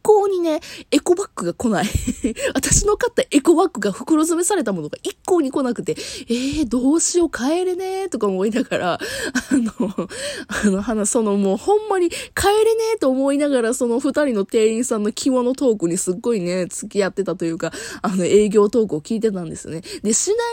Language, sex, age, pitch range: Japanese, female, 20-39, 205-310 Hz